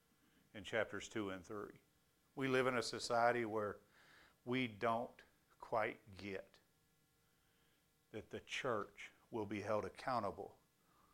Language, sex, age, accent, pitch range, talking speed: English, male, 50-69, American, 105-140 Hz, 120 wpm